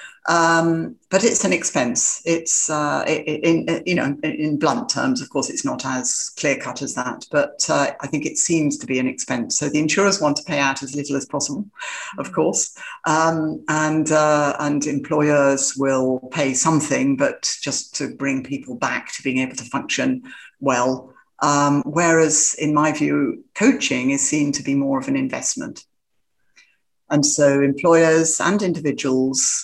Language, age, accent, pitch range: English, 50-69, British, 140-170 Hz